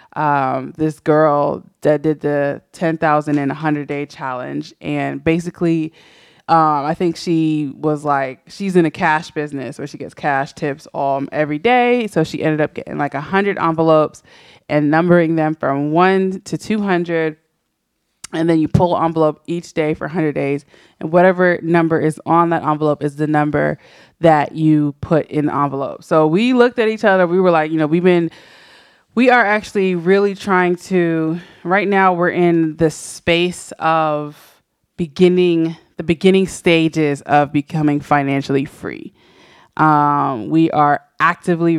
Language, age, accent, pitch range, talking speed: English, 20-39, American, 150-175 Hz, 160 wpm